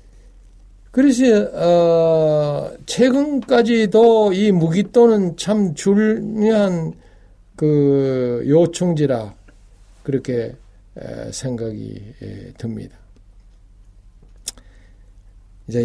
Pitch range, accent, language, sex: 100-145 Hz, native, Korean, male